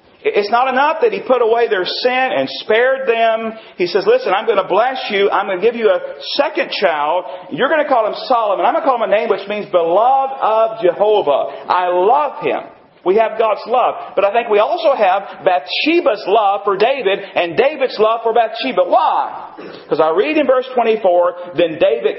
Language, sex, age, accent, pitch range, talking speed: English, male, 40-59, American, 180-290 Hz, 210 wpm